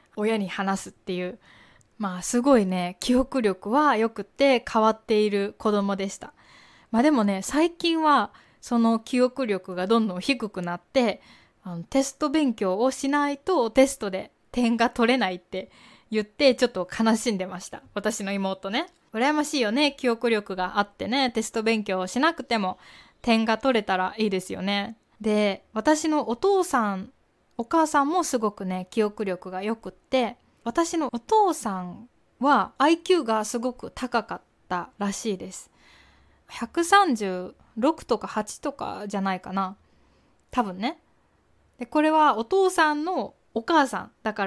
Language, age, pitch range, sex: Japanese, 20-39, 200-280 Hz, female